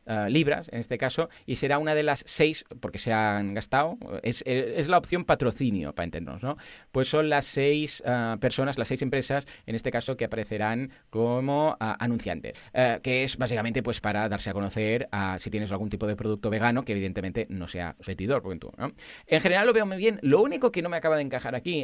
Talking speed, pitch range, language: 215 wpm, 110-150 Hz, Spanish